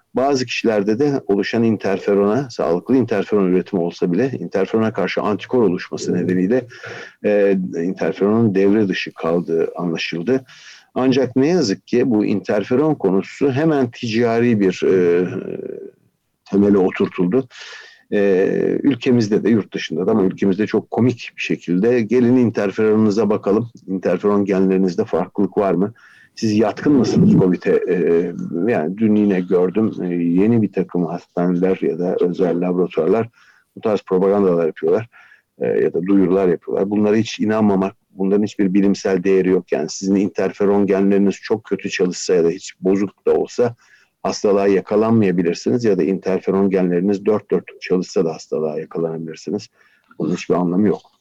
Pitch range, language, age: 95-115 Hz, Turkish, 60-79